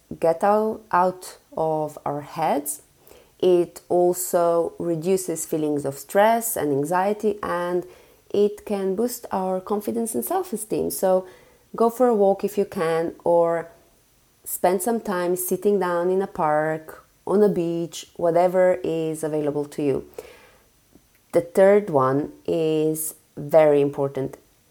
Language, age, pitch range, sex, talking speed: English, 30-49, 160-195 Hz, female, 125 wpm